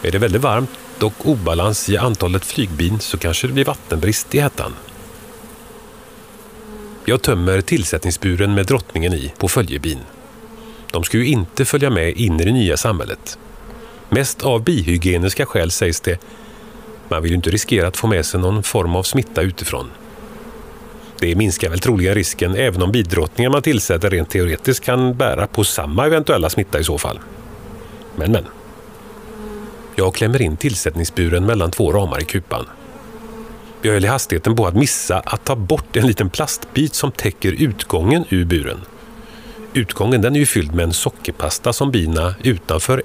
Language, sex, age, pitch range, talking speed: Swedish, male, 40-59, 90-145 Hz, 160 wpm